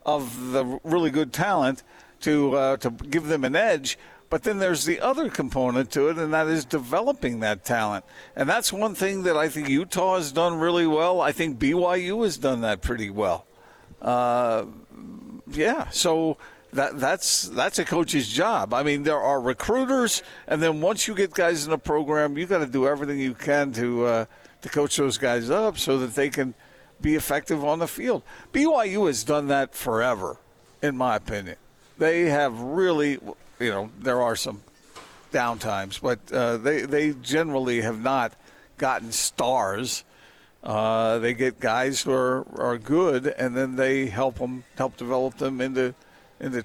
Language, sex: English, male